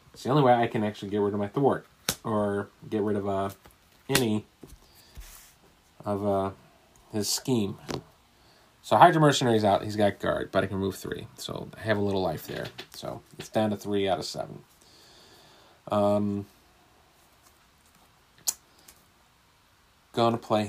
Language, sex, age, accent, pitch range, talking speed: English, male, 30-49, American, 95-110 Hz, 150 wpm